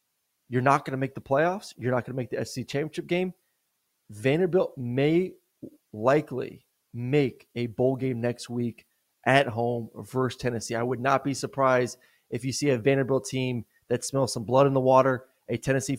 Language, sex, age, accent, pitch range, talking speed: English, male, 30-49, American, 125-145 Hz, 185 wpm